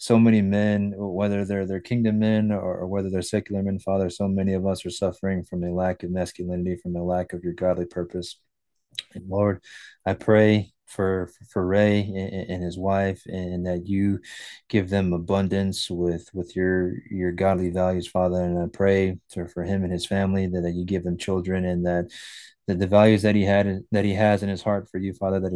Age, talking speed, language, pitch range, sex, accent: 20-39, 200 wpm, English, 90-100 Hz, male, American